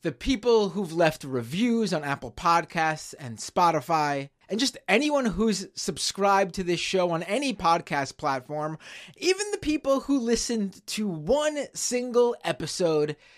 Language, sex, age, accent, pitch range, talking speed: English, male, 20-39, American, 140-195 Hz, 140 wpm